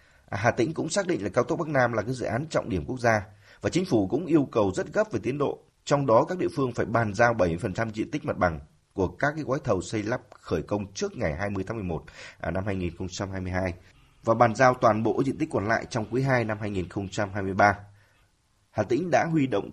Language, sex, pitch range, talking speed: Vietnamese, male, 95-125 Hz, 230 wpm